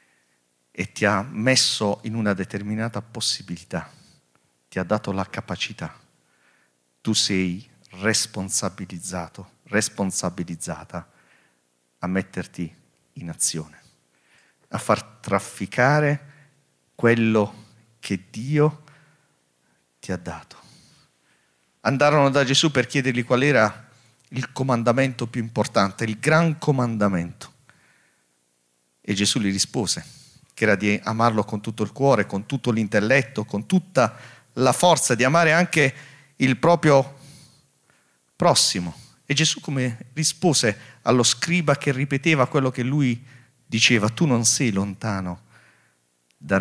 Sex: male